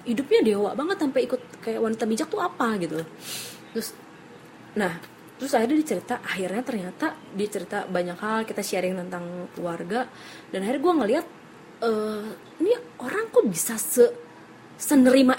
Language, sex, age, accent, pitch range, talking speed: Indonesian, female, 20-39, native, 180-250 Hz, 140 wpm